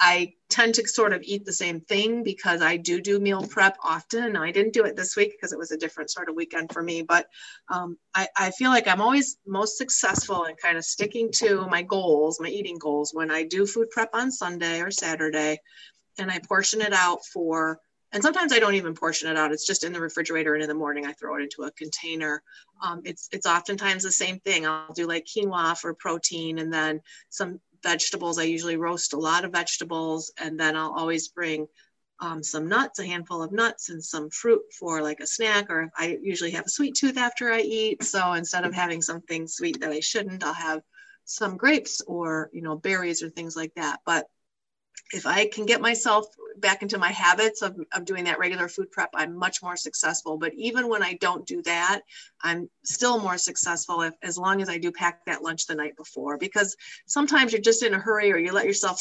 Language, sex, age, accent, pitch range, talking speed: English, female, 30-49, American, 165-215 Hz, 225 wpm